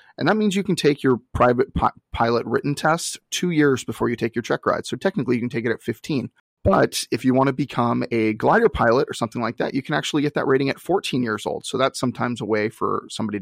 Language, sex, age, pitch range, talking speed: English, male, 30-49, 120-160 Hz, 255 wpm